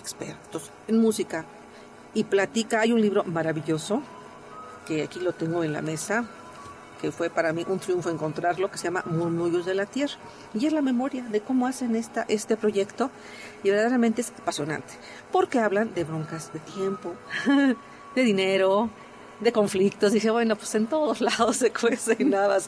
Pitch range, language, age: 170-225 Hz, Spanish, 50-69